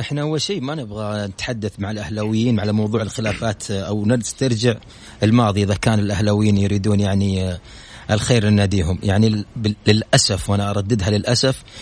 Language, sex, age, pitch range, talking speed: Arabic, male, 30-49, 105-125 Hz, 130 wpm